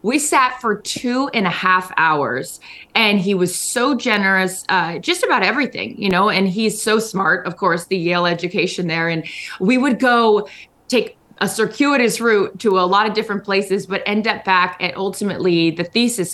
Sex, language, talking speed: female, English, 185 wpm